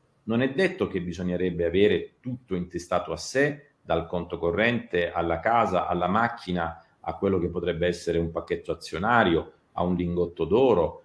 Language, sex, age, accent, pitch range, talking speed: Italian, male, 40-59, native, 90-145 Hz, 160 wpm